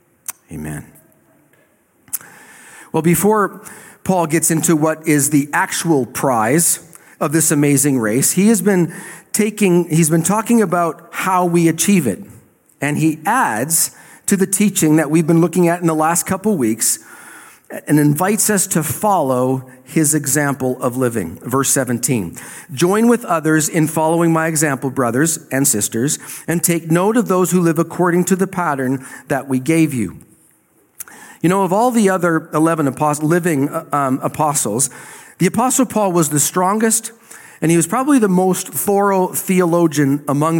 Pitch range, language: 150-195 Hz, English